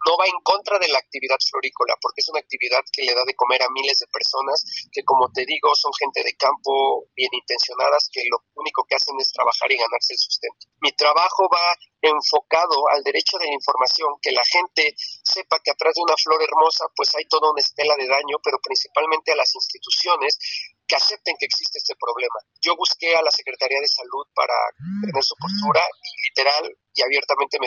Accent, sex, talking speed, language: Mexican, male, 205 wpm, Spanish